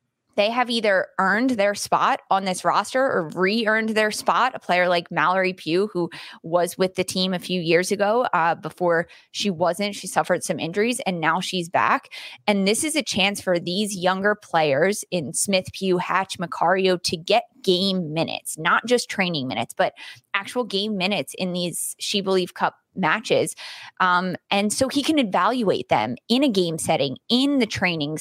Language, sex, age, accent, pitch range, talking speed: English, female, 20-39, American, 175-215 Hz, 180 wpm